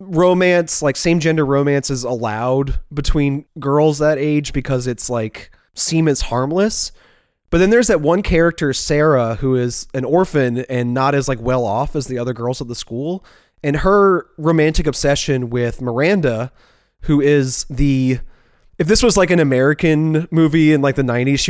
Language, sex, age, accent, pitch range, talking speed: English, male, 20-39, American, 120-155 Hz, 175 wpm